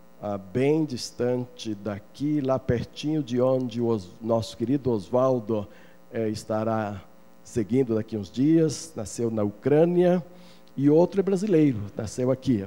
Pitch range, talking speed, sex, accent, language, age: 110-160 Hz, 130 wpm, male, Brazilian, Portuguese, 50-69